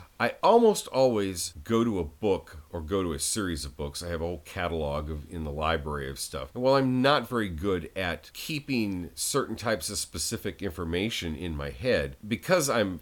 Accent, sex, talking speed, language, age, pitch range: American, male, 200 wpm, English, 40-59, 80-100 Hz